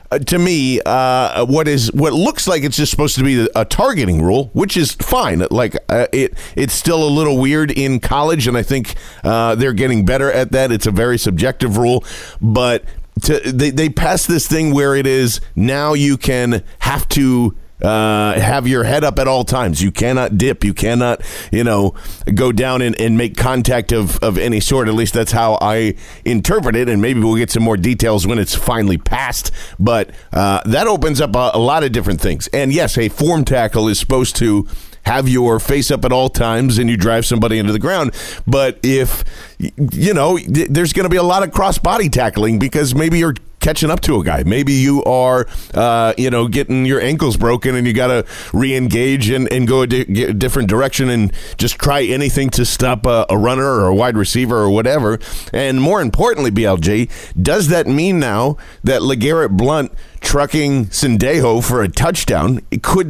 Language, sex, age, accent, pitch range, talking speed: English, male, 40-59, American, 110-140 Hz, 205 wpm